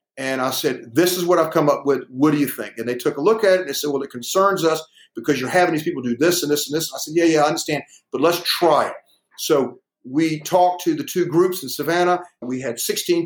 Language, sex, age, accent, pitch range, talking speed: English, male, 50-69, American, 135-165 Hz, 275 wpm